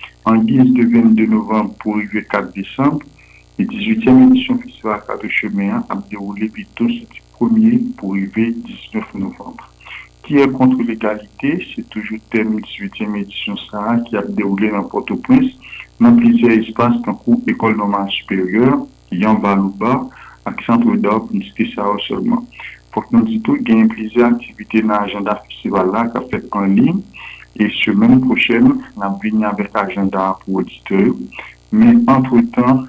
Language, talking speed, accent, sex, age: French, 160 wpm, French, male, 60-79